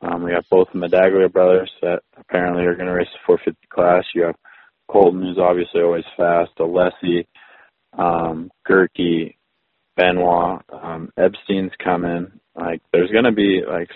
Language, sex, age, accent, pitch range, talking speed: English, male, 20-39, American, 80-90 Hz, 155 wpm